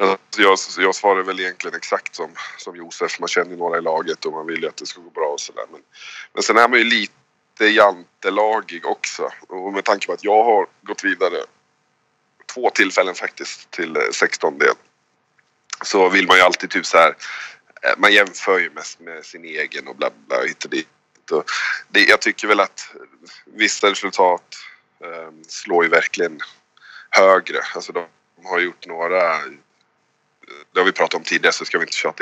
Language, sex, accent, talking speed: English, male, Swedish, 180 wpm